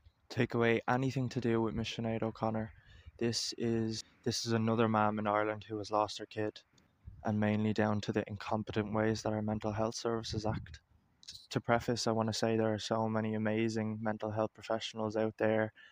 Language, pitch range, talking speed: English, 105-110 Hz, 190 wpm